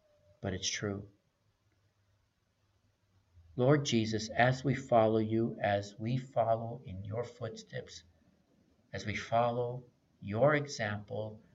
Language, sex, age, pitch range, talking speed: English, male, 50-69, 100-130 Hz, 105 wpm